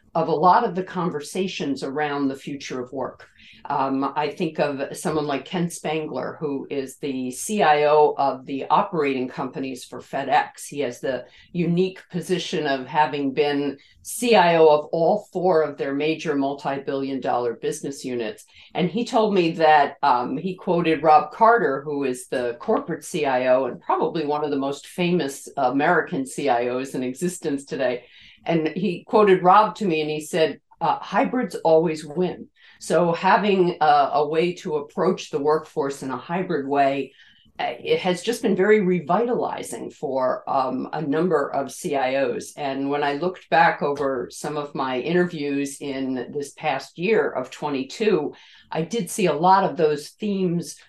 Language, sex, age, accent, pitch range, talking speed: English, female, 50-69, American, 140-180 Hz, 160 wpm